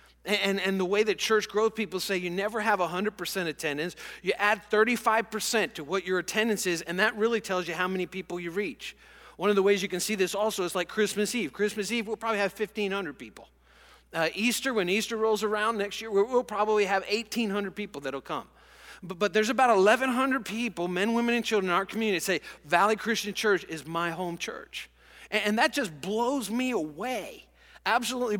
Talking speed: 205 wpm